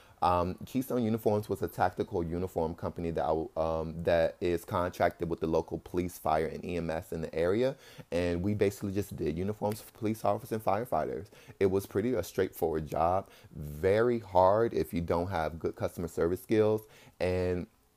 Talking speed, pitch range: 175 wpm, 85-105 Hz